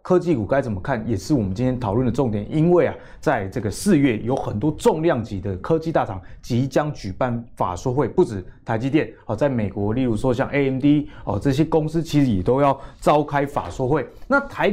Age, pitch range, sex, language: 20-39, 110-150 Hz, male, Chinese